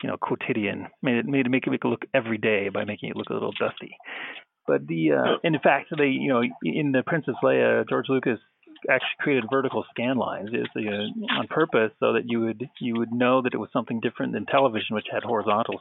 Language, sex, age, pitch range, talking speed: English, male, 40-59, 115-145 Hz, 235 wpm